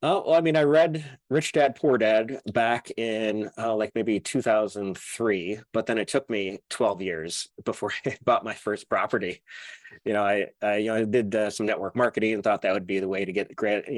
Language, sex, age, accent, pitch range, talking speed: English, male, 20-39, American, 105-130 Hz, 220 wpm